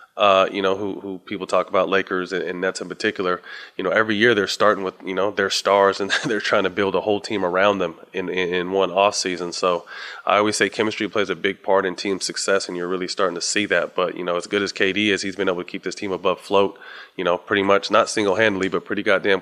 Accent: American